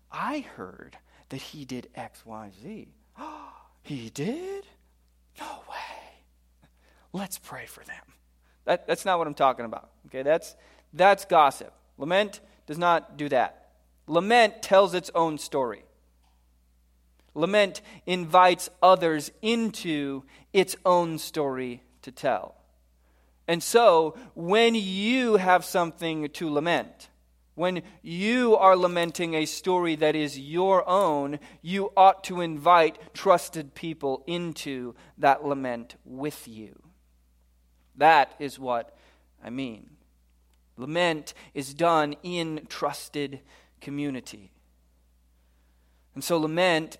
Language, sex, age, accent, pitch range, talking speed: English, male, 40-59, American, 115-180 Hz, 115 wpm